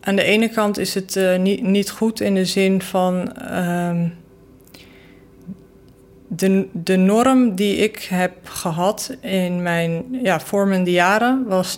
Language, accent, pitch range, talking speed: Dutch, Dutch, 175-195 Hz, 145 wpm